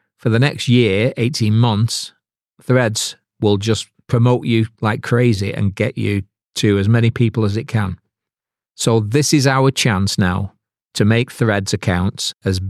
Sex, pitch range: male, 100-120 Hz